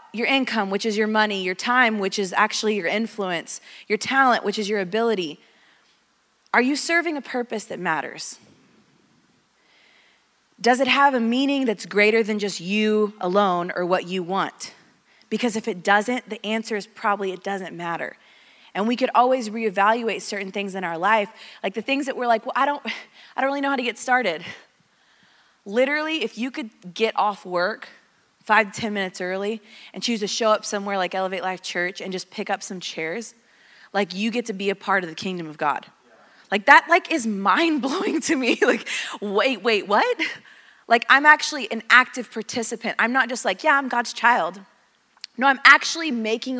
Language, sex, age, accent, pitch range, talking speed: English, female, 20-39, American, 200-255 Hz, 190 wpm